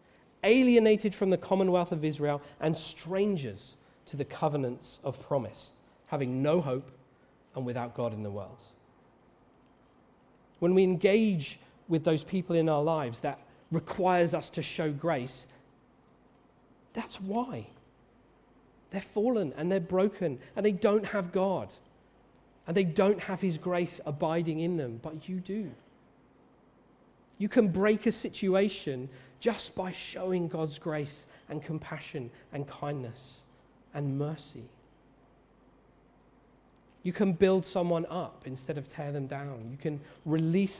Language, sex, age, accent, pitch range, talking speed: English, male, 30-49, British, 135-185 Hz, 130 wpm